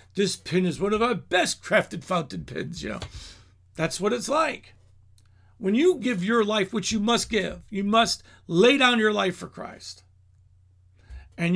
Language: English